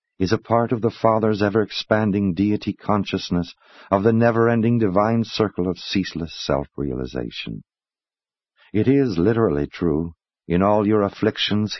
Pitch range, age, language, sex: 85-110 Hz, 60-79, English, male